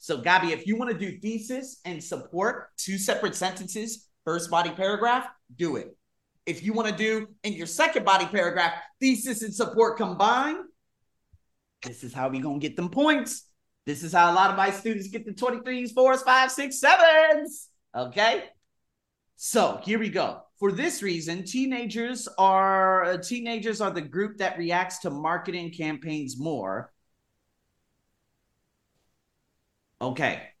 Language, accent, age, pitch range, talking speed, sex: English, American, 30-49, 165-225 Hz, 145 wpm, male